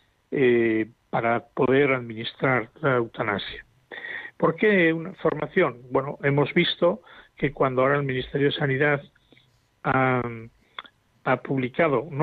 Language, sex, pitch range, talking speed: Spanish, male, 120-155 Hz, 120 wpm